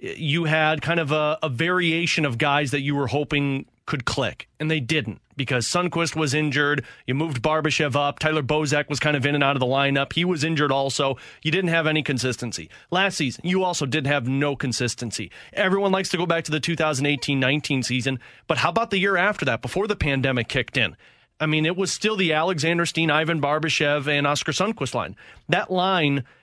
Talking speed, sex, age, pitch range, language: 205 wpm, male, 30-49, 140-170 Hz, English